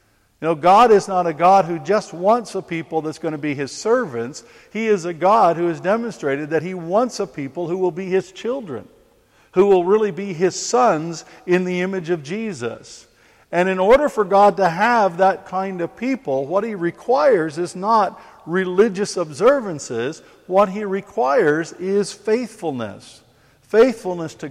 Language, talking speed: English, 175 wpm